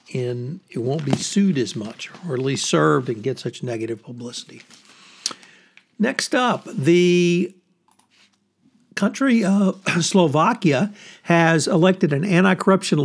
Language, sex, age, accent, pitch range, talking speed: English, male, 60-79, American, 150-185 Hz, 120 wpm